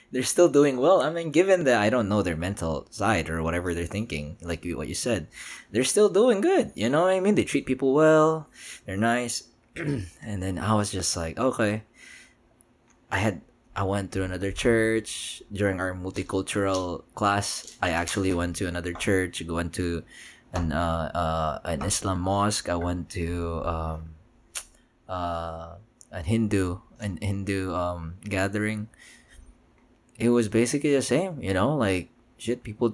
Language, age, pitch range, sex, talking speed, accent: Filipino, 20-39, 85-115 Hz, male, 165 wpm, native